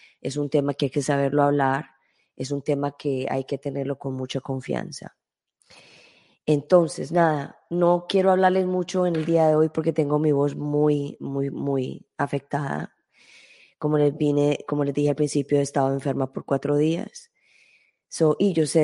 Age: 20-39